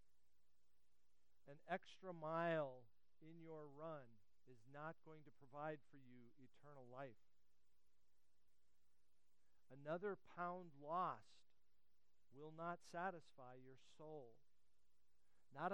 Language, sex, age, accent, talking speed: English, male, 50-69, American, 90 wpm